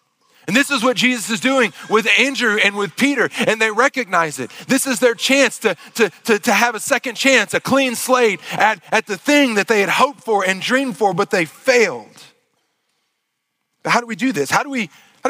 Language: English